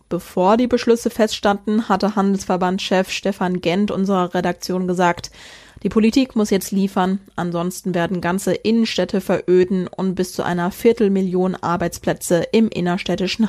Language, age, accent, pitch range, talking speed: German, 20-39, German, 180-220 Hz, 130 wpm